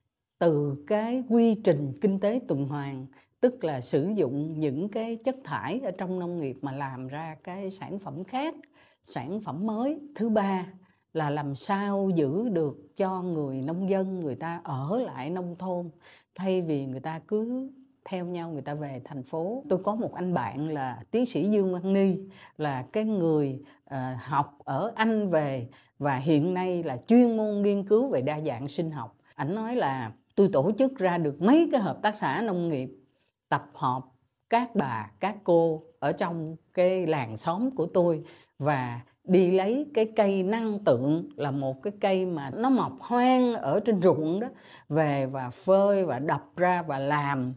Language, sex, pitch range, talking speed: Vietnamese, female, 145-205 Hz, 185 wpm